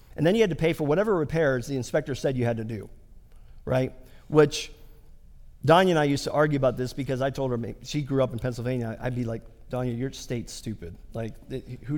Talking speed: 220 wpm